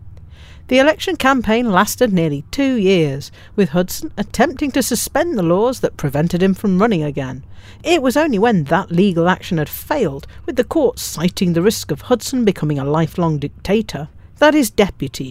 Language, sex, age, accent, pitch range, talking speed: English, female, 50-69, British, 155-235 Hz, 175 wpm